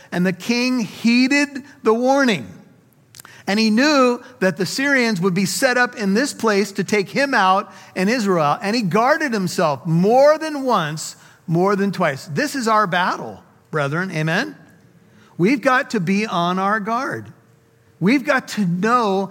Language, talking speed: English, 160 wpm